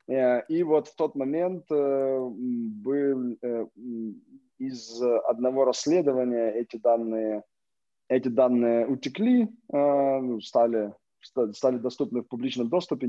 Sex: male